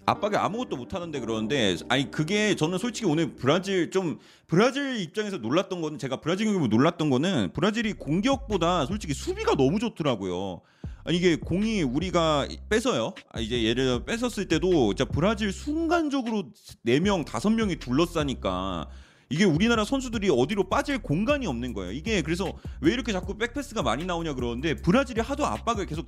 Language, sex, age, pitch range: Korean, male, 30-49, 140-230 Hz